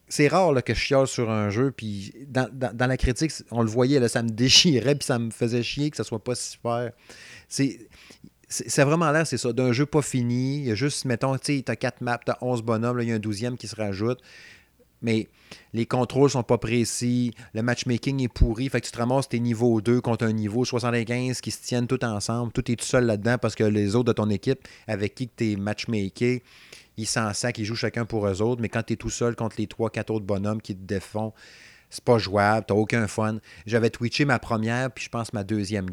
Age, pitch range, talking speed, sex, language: 30-49, 110-125 Hz, 245 wpm, male, French